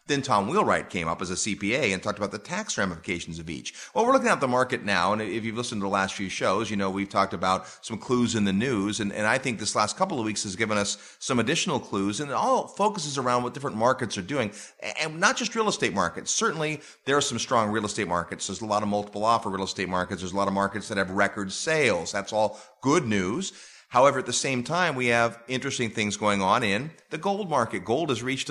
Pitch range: 100-135 Hz